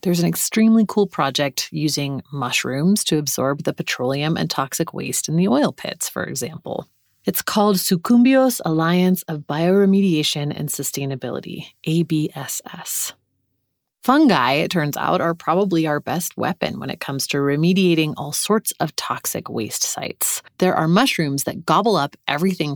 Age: 30-49